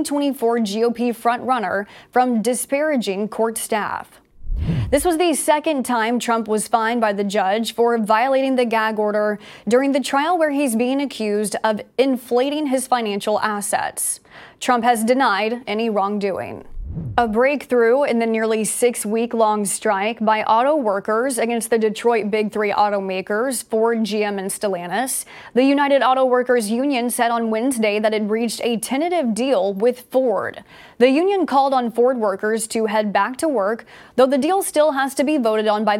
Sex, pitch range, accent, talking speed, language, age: female, 215-255 Hz, American, 165 wpm, English, 20-39